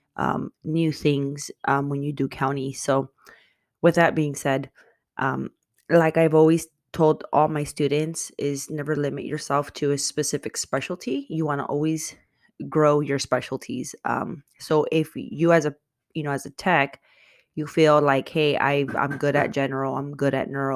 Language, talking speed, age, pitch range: English, 175 wpm, 20-39, 140-155 Hz